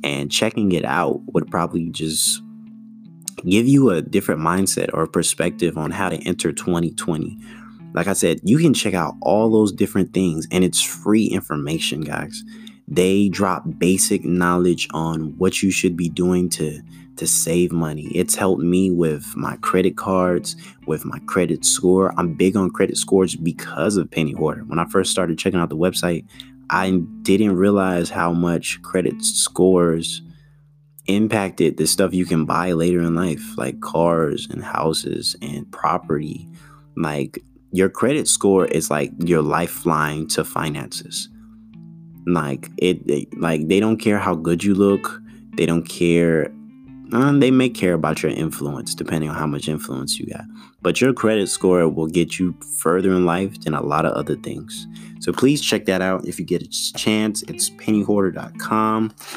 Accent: American